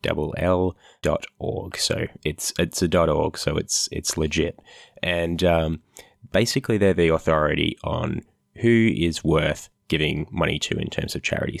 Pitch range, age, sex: 80-95 Hz, 20-39, male